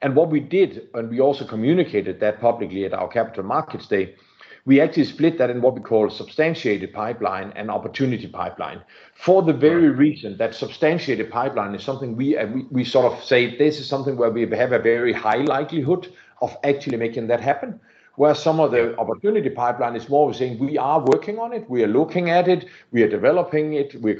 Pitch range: 115-150 Hz